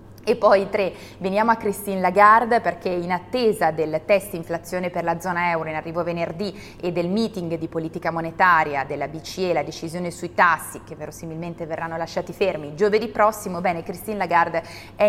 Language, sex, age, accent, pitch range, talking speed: Italian, female, 20-39, native, 170-205 Hz, 170 wpm